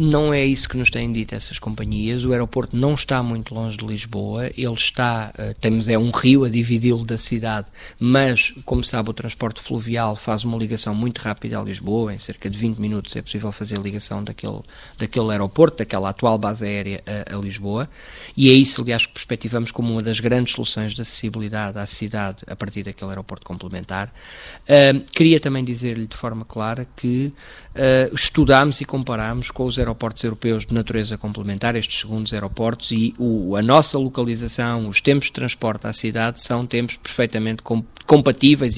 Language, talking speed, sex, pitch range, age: Portuguese, 175 wpm, male, 110-125 Hz, 20-39